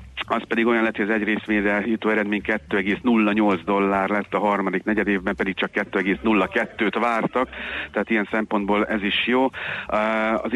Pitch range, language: 100-110 Hz, Hungarian